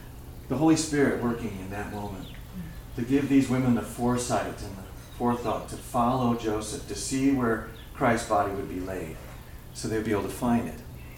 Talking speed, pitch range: 185 wpm, 95-125 Hz